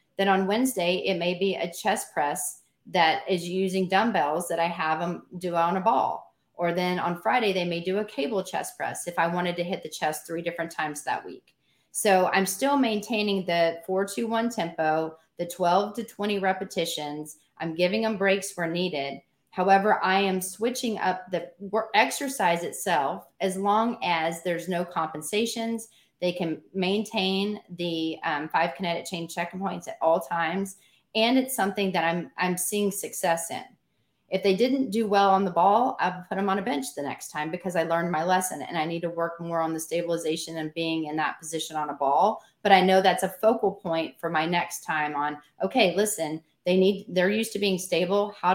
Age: 30-49